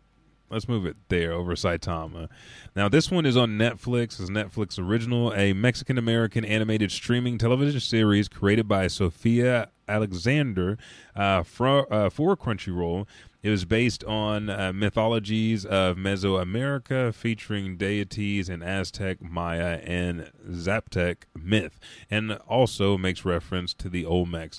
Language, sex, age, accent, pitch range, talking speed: English, male, 30-49, American, 90-115 Hz, 130 wpm